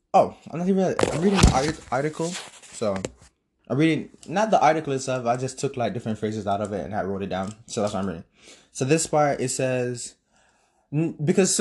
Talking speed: 210 wpm